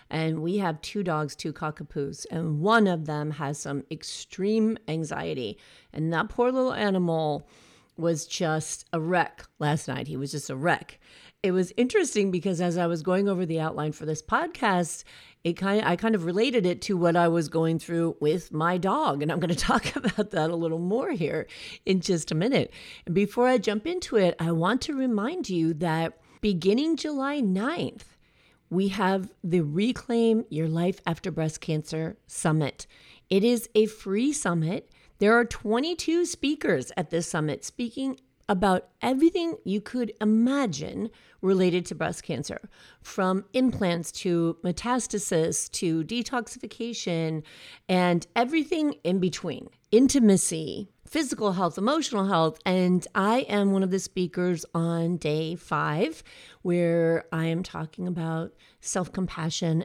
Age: 40-59